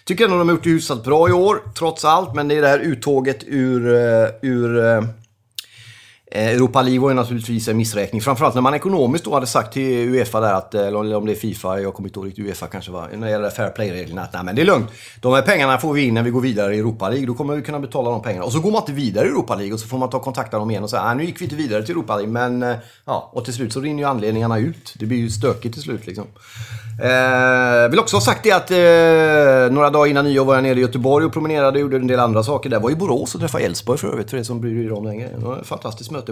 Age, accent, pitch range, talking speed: 30-49, native, 105-140 Hz, 275 wpm